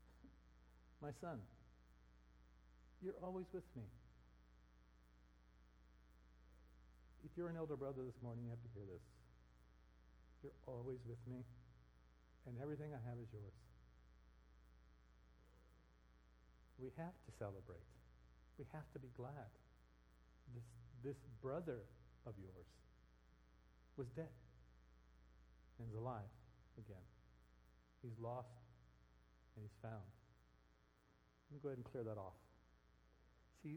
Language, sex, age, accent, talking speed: English, male, 60-79, American, 110 wpm